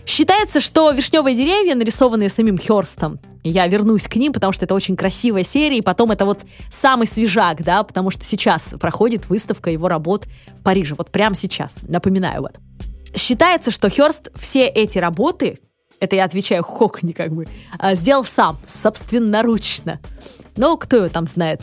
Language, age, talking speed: Russian, 20-39, 165 wpm